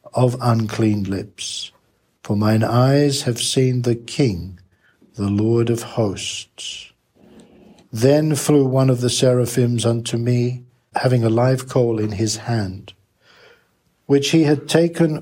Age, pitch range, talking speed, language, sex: 60-79, 110-130 Hz, 130 wpm, English, male